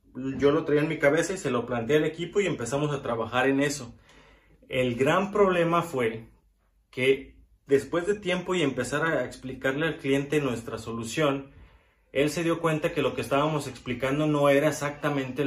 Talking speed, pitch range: 180 wpm, 120-145 Hz